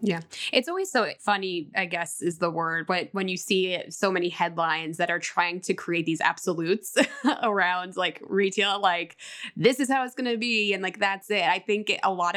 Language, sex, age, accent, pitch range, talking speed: English, female, 20-39, American, 170-210 Hz, 210 wpm